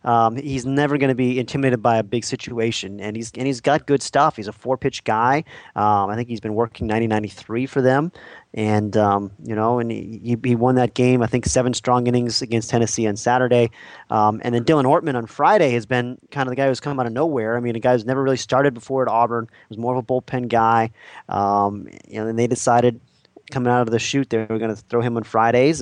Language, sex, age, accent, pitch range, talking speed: English, male, 30-49, American, 110-135 Hz, 240 wpm